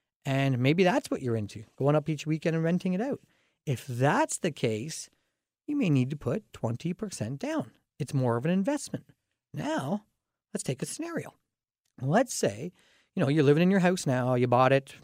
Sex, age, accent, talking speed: male, 40-59, American, 190 wpm